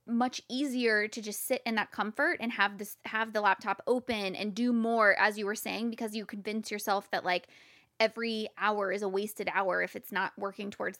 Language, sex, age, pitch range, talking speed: English, female, 20-39, 195-240 Hz, 215 wpm